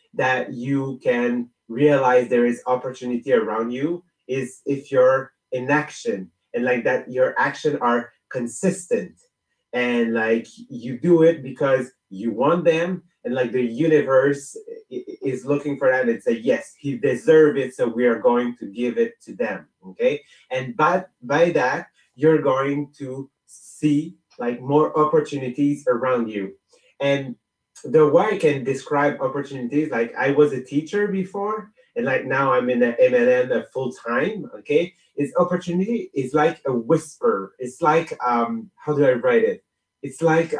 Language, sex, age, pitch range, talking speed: English, male, 30-49, 130-185 Hz, 155 wpm